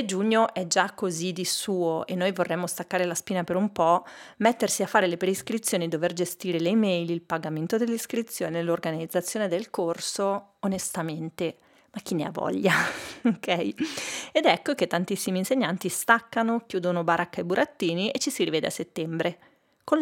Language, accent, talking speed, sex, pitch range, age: Italian, native, 160 wpm, female, 180-230 Hz, 30-49